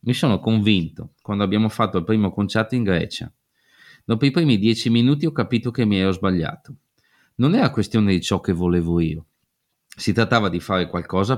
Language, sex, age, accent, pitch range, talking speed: Italian, male, 30-49, native, 90-115 Hz, 185 wpm